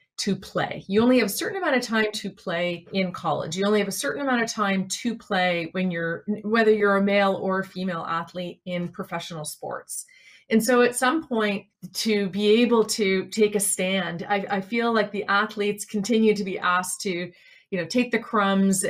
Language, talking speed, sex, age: English, 205 wpm, female, 30-49